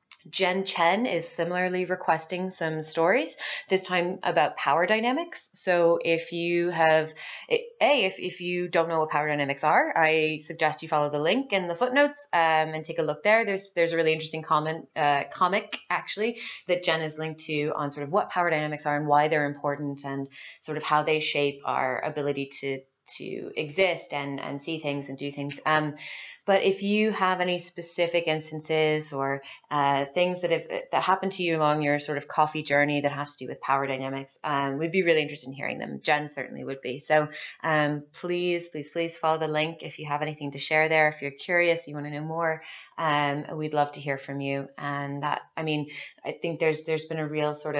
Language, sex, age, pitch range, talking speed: English, female, 20-39, 145-170 Hz, 210 wpm